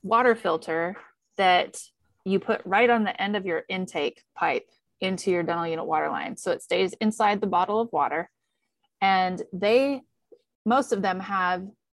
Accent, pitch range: American, 170-210 Hz